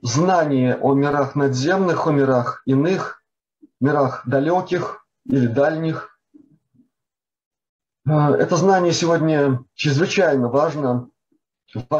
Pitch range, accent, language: 135-165 Hz, native, Russian